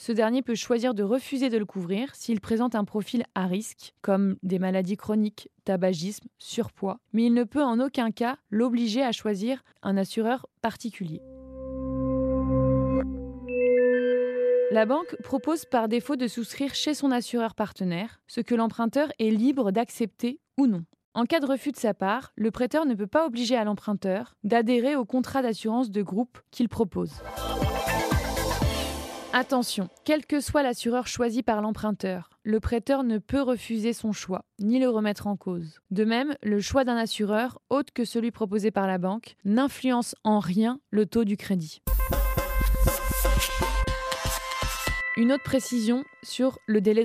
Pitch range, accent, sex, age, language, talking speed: 205-250 Hz, French, female, 20-39, French, 155 wpm